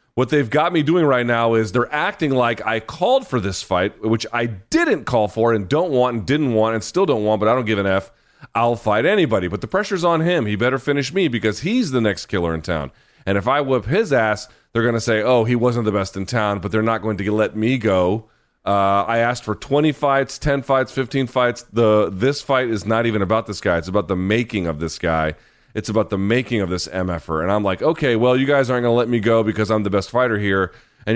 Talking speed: 260 wpm